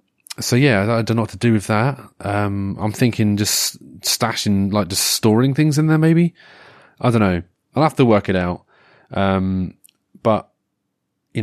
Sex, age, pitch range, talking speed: male, 30-49, 95-120 Hz, 180 wpm